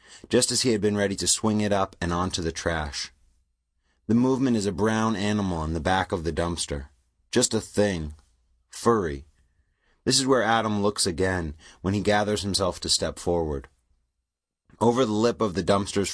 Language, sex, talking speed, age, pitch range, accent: English, male, 180 wpm, 30-49, 80-110 Hz, American